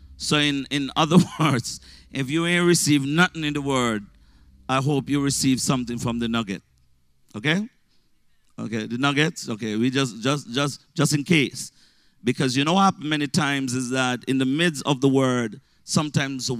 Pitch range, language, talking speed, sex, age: 130-155 Hz, English, 175 wpm, male, 50-69